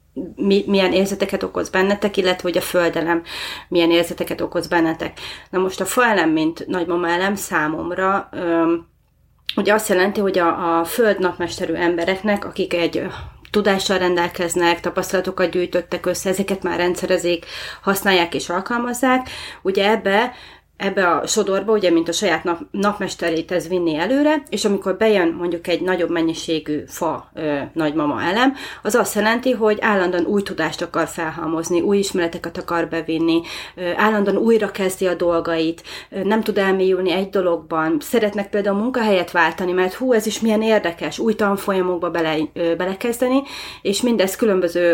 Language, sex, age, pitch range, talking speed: Hungarian, female, 30-49, 170-210 Hz, 145 wpm